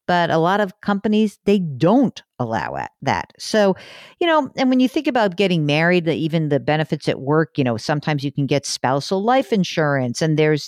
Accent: American